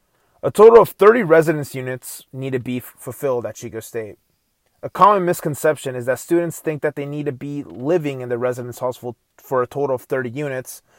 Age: 30-49